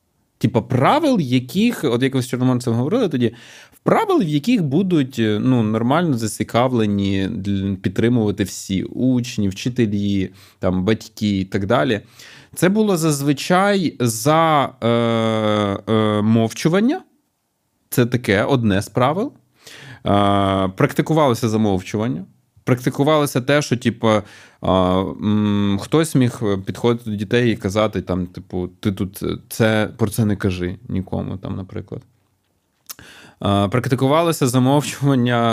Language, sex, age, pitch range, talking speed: Ukrainian, male, 20-39, 100-130 Hz, 115 wpm